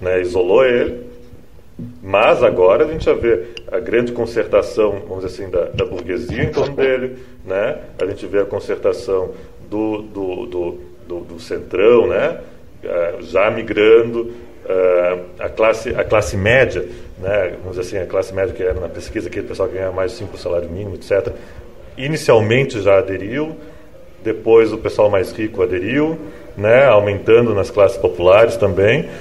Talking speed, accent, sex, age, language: 160 wpm, Brazilian, male, 40-59, Portuguese